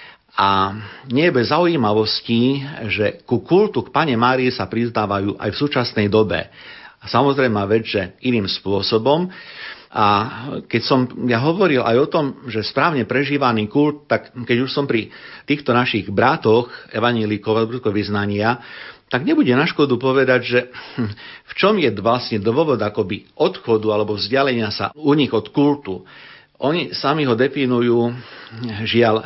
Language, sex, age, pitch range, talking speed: Slovak, male, 50-69, 105-125 Hz, 145 wpm